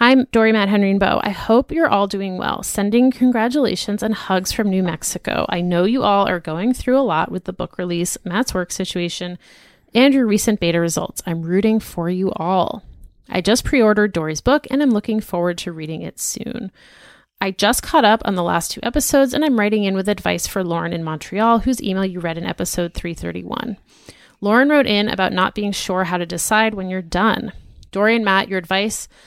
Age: 30-49